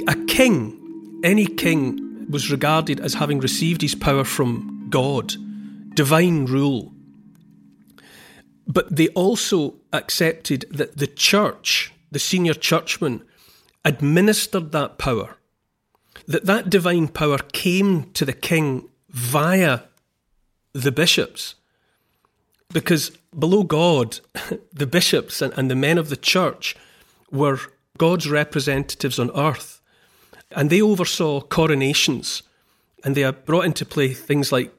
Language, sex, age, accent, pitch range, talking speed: English, male, 40-59, British, 135-175 Hz, 115 wpm